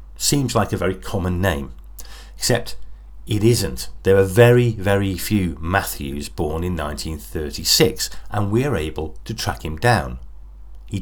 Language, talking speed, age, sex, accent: English, 145 wpm, 50-69, male, British